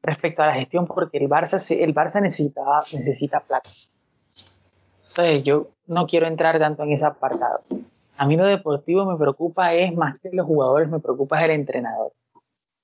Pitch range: 135-165 Hz